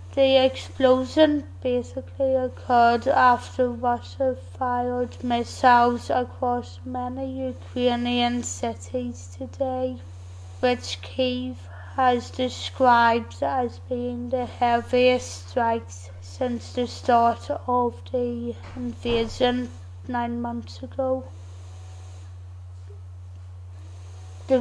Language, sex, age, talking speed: English, female, 20-39, 80 wpm